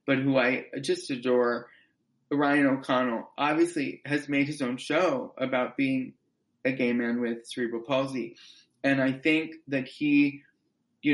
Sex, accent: male, American